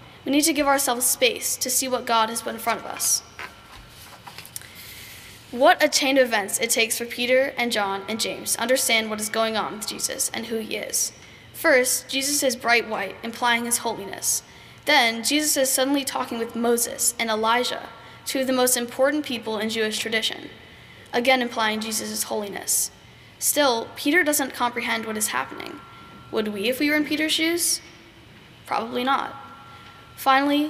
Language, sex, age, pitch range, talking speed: English, female, 10-29, 225-265 Hz, 175 wpm